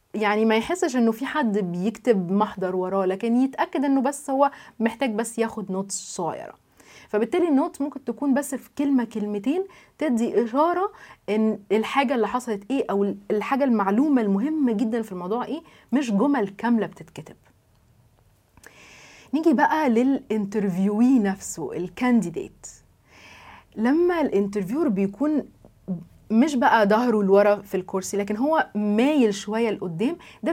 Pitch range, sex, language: 200-275 Hz, female, Arabic